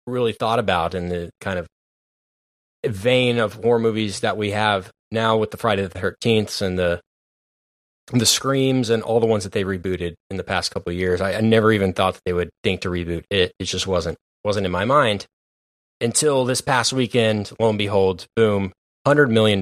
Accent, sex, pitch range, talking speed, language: American, male, 90-115 Hz, 200 wpm, English